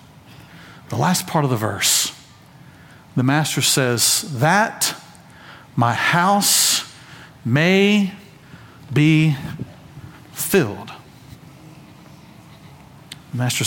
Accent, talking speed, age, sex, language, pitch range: American, 75 wpm, 40-59, male, English, 130-165 Hz